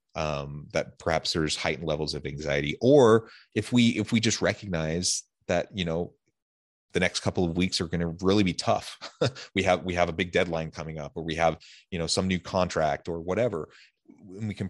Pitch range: 80-100 Hz